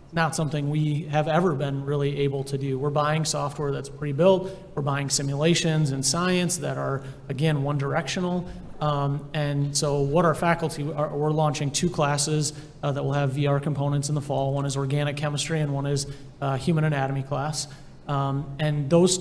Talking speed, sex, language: 185 wpm, male, English